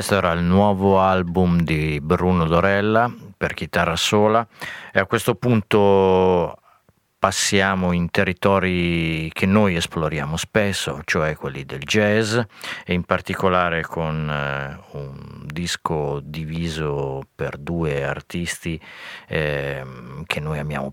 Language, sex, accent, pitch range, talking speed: Italian, male, native, 75-95 Hz, 120 wpm